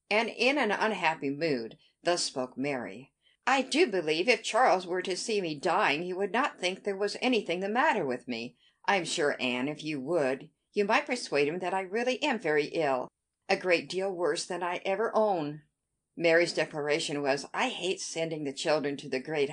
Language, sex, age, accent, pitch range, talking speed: English, female, 60-79, American, 155-210 Hz, 200 wpm